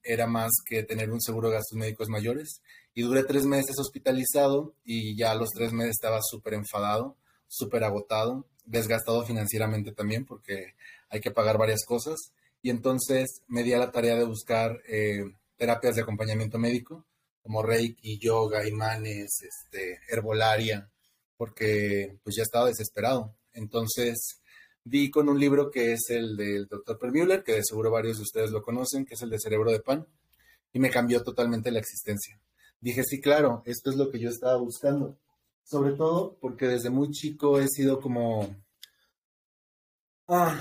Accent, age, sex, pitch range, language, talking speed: Mexican, 30-49, male, 110-130 Hz, Spanish, 165 wpm